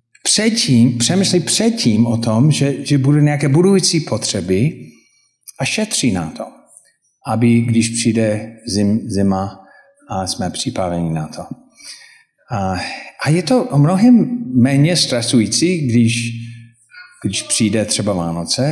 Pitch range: 115-150 Hz